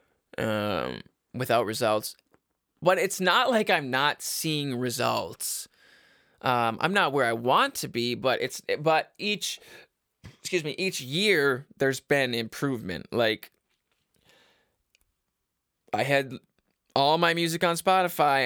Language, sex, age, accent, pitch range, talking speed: English, male, 20-39, American, 120-160 Hz, 125 wpm